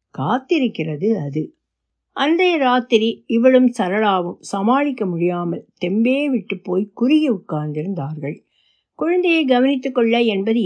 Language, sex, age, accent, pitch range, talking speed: Tamil, female, 60-79, native, 180-255 Hz, 95 wpm